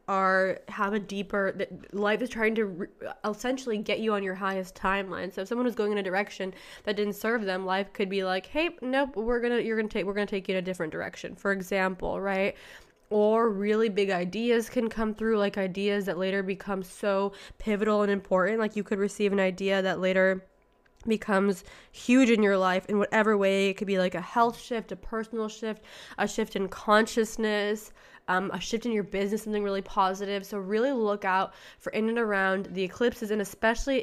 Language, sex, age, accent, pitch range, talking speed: English, female, 20-39, American, 190-220 Hz, 210 wpm